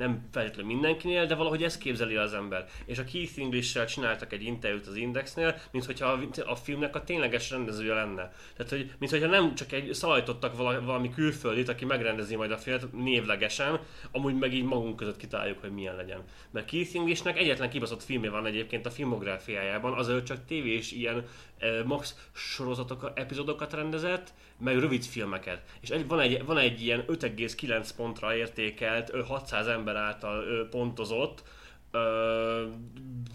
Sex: male